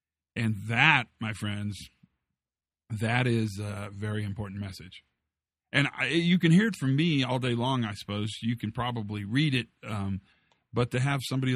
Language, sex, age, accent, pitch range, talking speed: English, male, 40-59, American, 100-120 Hz, 170 wpm